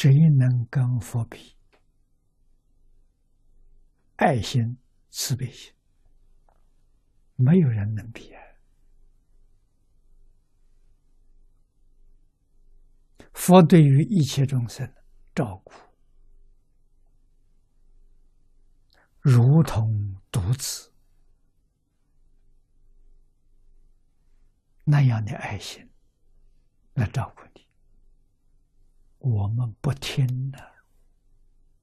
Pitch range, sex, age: 115-160 Hz, male, 60-79